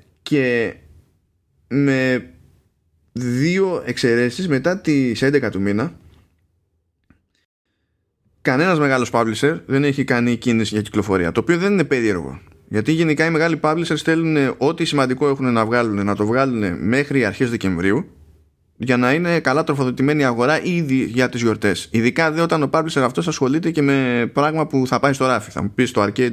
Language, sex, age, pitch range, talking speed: Greek, male, 20-39, 105-145 Hz, 155 wpm